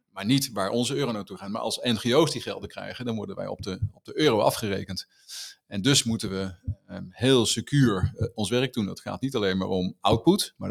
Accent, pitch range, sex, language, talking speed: Dutch, 100-125 Hz, male, Dutch, 230 wpm